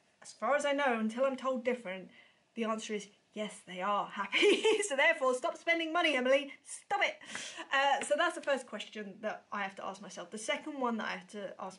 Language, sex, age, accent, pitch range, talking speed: English, female, 20-39, British, 200-255 Hz, 225 wpm